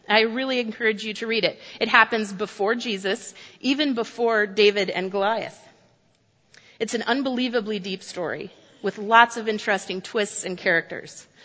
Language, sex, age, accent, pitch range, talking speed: English, female, 30-49, American, 185-225 Hz, 145 wpm